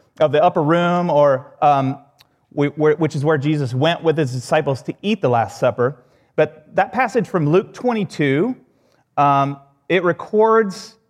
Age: 30-49